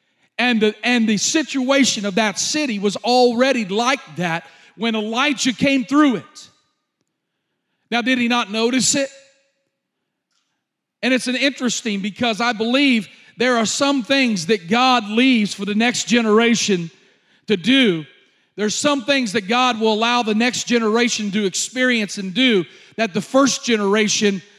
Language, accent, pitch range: English, American, 210-270 Hz